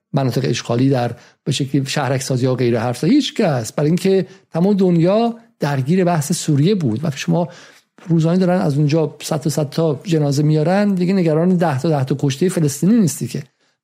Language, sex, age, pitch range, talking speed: Persian, male, 50-69, 135-175 Hz, 180 wpm